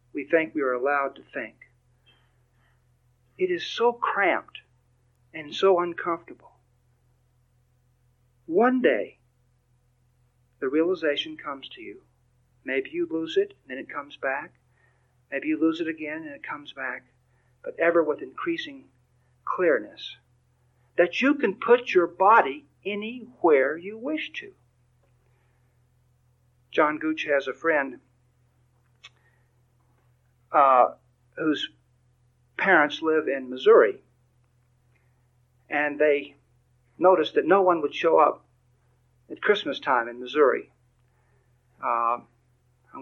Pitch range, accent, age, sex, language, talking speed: 125-165 Hz, American, 50-69, male, English, 110 wpm